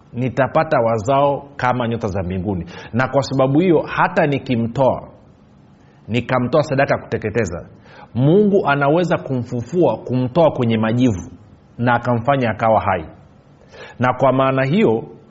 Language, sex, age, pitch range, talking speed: Swahili, male, 40-59, 110-140 Hz, 115 wpm